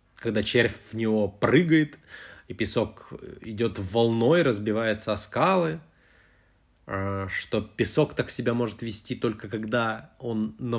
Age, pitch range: 20-39, 95-120 Hz